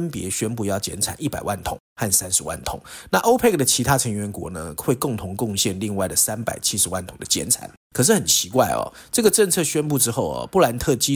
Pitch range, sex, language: 100-145 Hz, male, Chinese